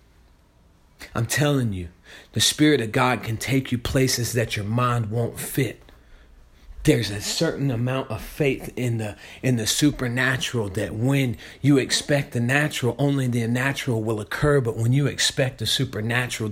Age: 40-59